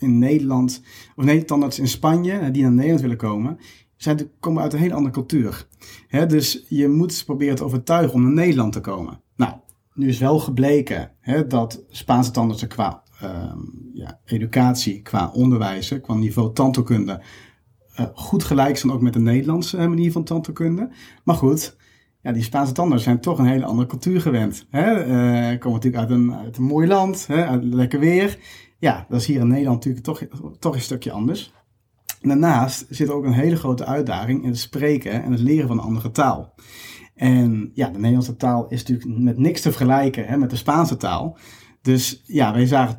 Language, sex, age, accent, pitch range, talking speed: Dutch, male, 40-59, Dutch, 120-150 Hz, 195 wpm